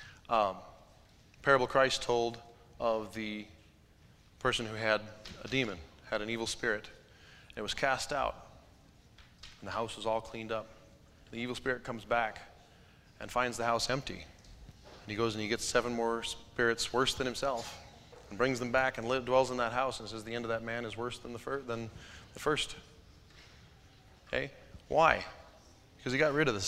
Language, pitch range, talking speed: English, 100-125 Hz, 175 wpm